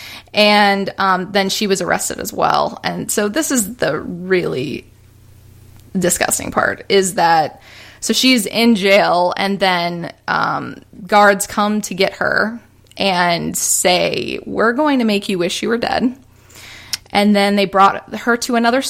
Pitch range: 190-225 Hz